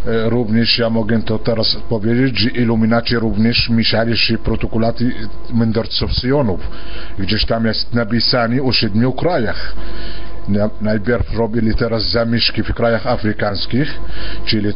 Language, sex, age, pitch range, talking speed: Polish, male, 50-69, 110-125 Hz, 115 wpm